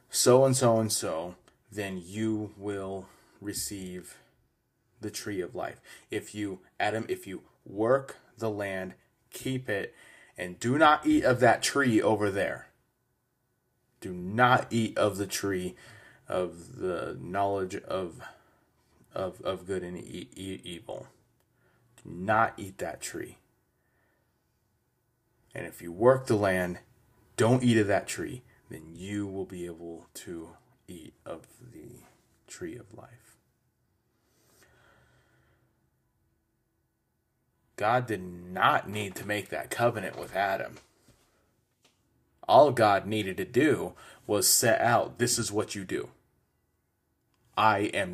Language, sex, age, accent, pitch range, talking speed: English, male, 20-39, American, 95-120 Hz, 125 wpm